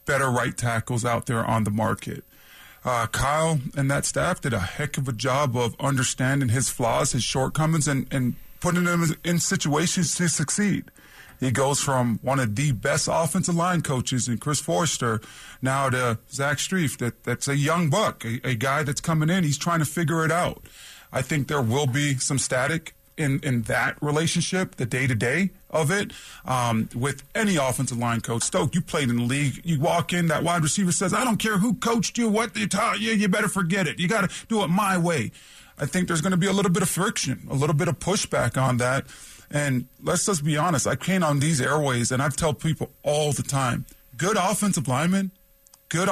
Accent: American